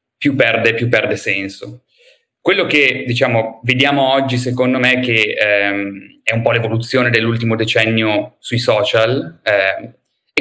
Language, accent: Italian, native